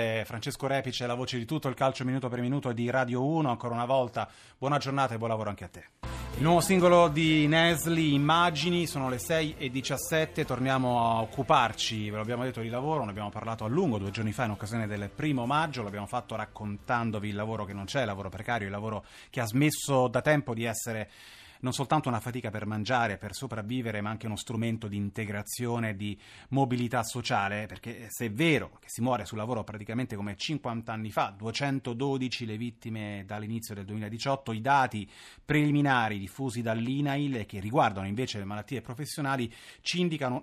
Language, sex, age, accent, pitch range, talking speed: Italian, male, 30-49, native, 110-135 Hz, 190 wpm